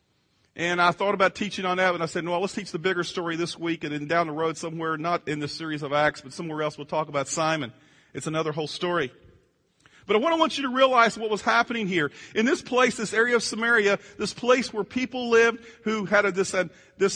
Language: English